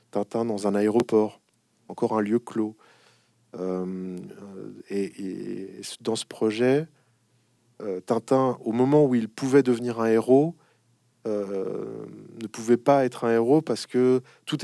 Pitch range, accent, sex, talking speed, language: 100-125 Hz, French, male, 145 wpm, French